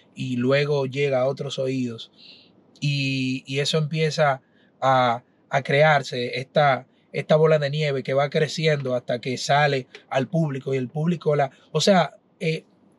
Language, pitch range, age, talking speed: Spanish, 140-170 Hz, 30-49, 155 wpm